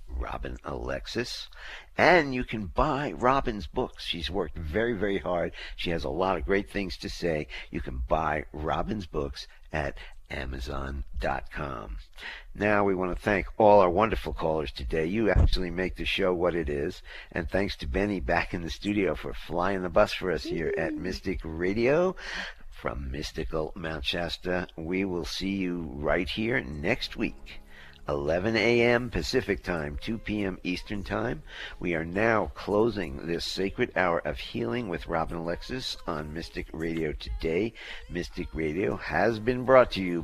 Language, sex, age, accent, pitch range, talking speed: English, male, 60-79, American, 80-105 Hz, 160 wpm